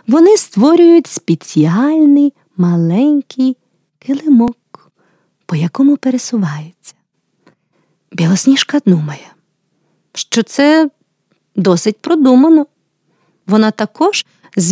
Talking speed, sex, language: 70 wpm, female, Ukrainian